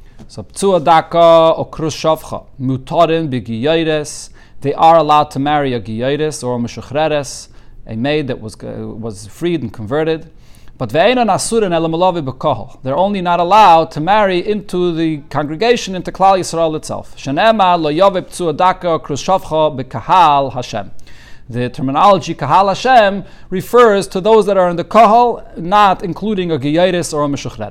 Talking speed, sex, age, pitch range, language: 140 wpm, male, 40-59, 130-175 Hz, English